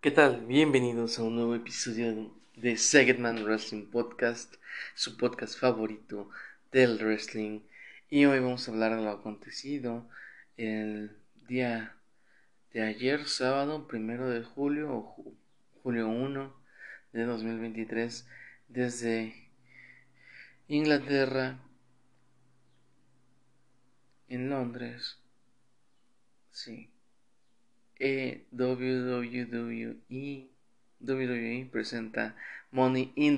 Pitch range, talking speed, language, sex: 115-130 Hz, 80 wpm, Spanish, male